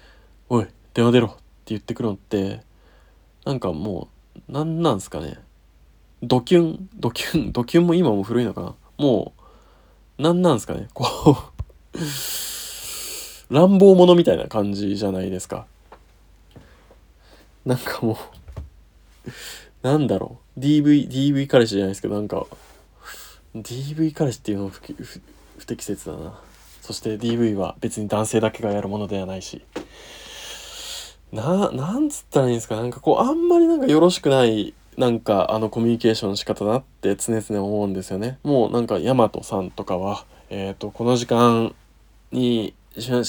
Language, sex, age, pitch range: Japanese, male, 20-39, 100-135 Hz